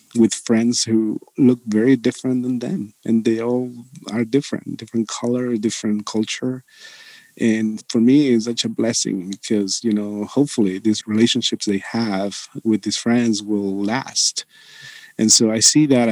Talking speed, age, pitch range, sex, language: 155 wpm, 40-59, 110-130 Hz, male, English